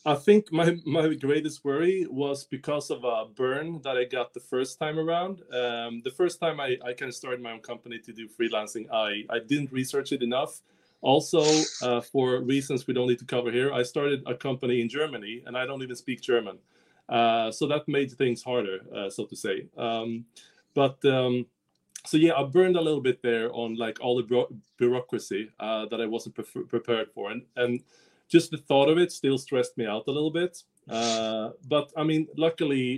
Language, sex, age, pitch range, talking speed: English, male, 20-39, 115-145 Hz, 205 wpm